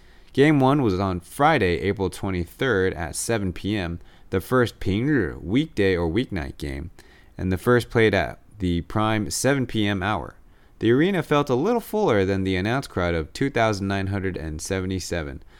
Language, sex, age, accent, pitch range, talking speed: English, male, 30-49, American, 90-115 Hz, 145 wpm